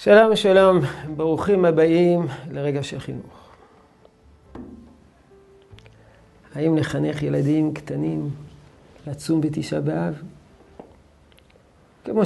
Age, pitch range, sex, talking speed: 50-69, 145-185 Hz, male, 75 wpm